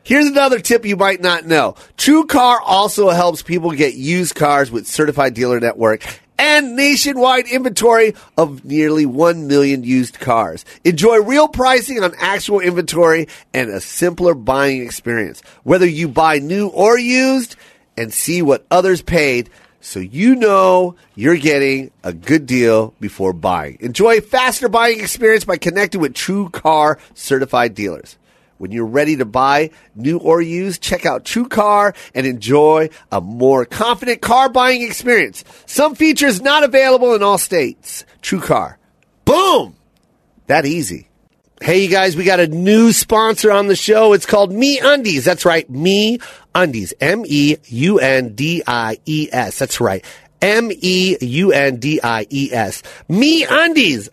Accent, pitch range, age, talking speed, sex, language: American, 140-225 Hz, 30-49, 155 wpm, male, English